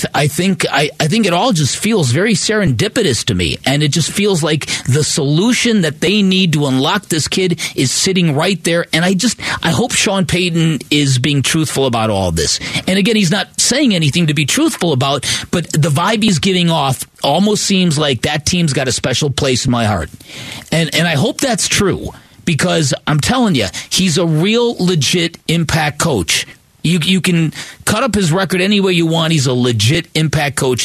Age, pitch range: 40-59, 140-185 Hz